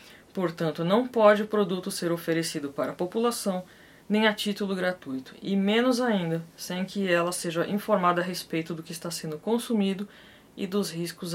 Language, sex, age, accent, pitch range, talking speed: Portuguese, female, 20-39, Brazilian, 170-205 Hz, 170 wpm